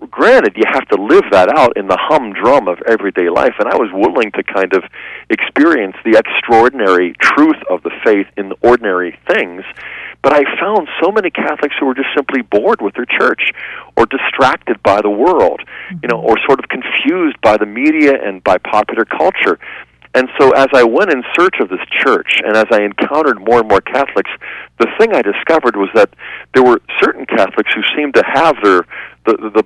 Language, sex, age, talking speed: English, male, 40-59, 200 wpm